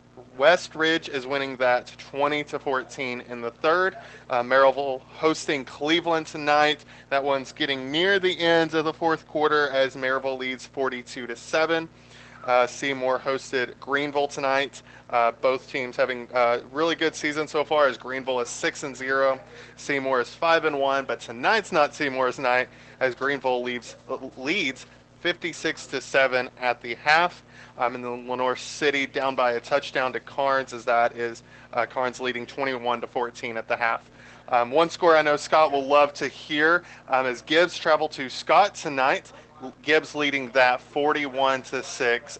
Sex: male